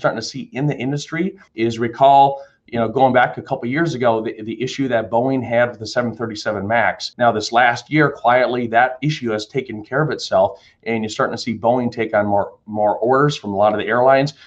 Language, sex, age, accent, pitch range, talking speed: English, male, 40-59, American, 105-130 Hz, 230 wpm